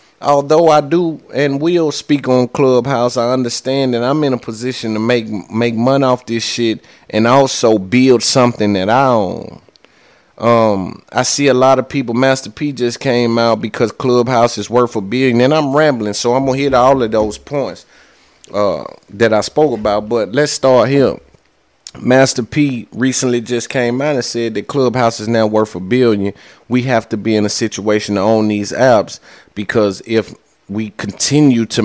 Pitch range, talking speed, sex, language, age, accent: 110-135 Hz, 185 wpm, male, English, 30-49, American